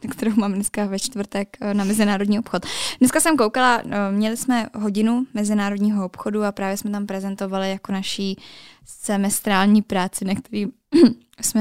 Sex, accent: female, native